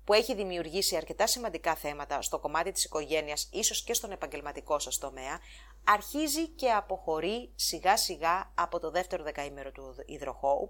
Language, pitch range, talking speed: English, 150-205 Hz, 150 wpm